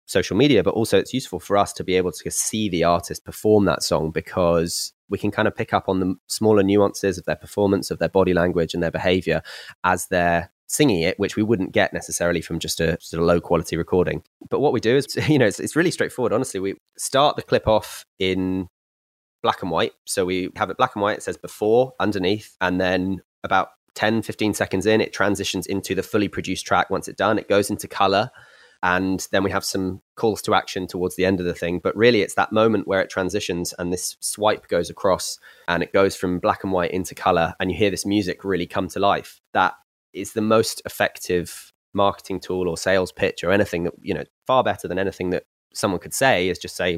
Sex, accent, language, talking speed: male, British, English, 230 wpm